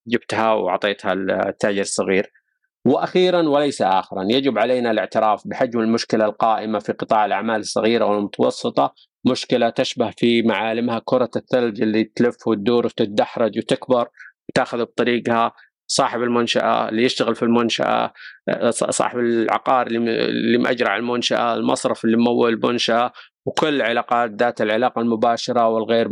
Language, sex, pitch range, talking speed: Arabic, male, 110-120 Hz, 120 wpm